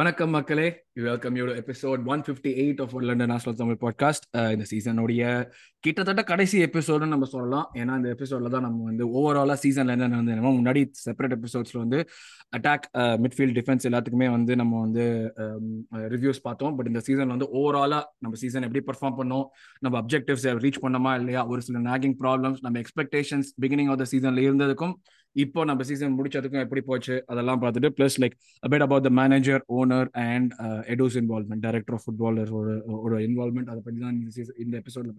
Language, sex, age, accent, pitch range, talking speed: Tamil, male, 20-39, native, 120-140 Hz, 105 wpm